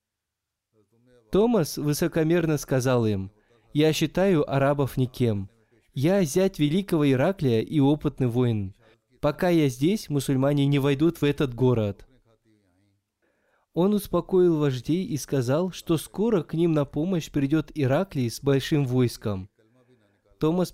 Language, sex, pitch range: Russian, male, 115-155 Hz